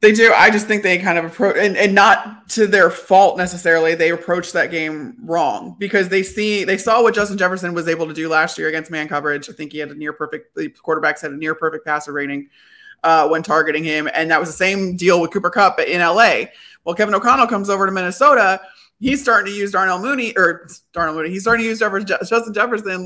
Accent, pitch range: American, 165-215 Hz